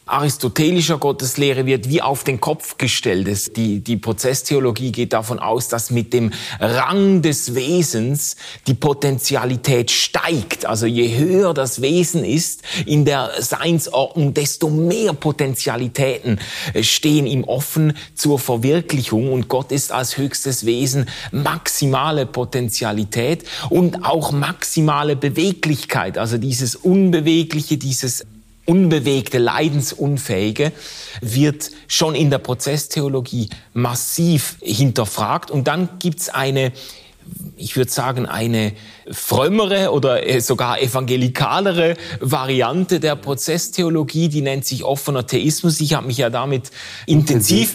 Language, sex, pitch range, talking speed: German, male, 125-155 Hz, 115 wpm